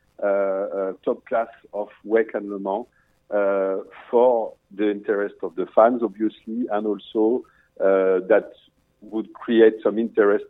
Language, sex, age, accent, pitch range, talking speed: English, male, 50-69, French, 105-135 Hz, 145 wpm